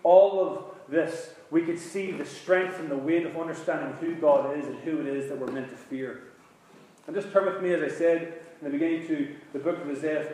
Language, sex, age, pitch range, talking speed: English, male, 30-49, 145-185 Hz, 245 wpm